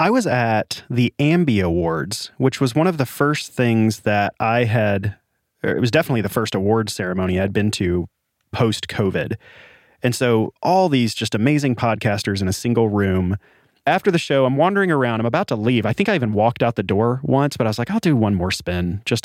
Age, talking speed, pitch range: 30-49, 210 wpm, 100-135 Hz